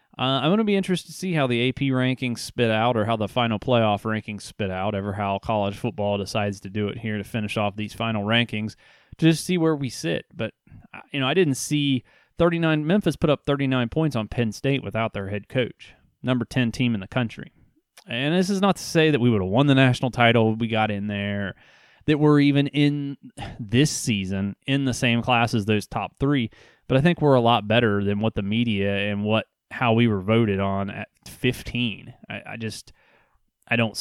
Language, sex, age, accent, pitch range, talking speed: English, male, 30-49, American, 105-130 Hz, 220 wpm